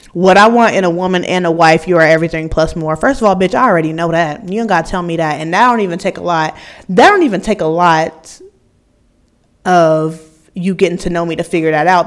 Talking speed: 260 wpm